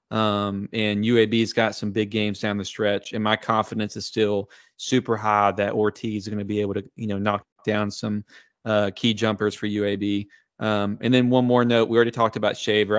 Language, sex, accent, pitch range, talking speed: English, male, American, 100-110 Hz, 210 wpm